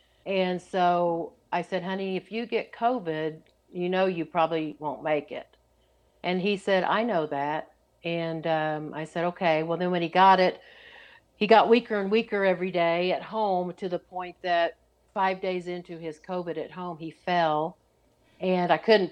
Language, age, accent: English, 50-69, American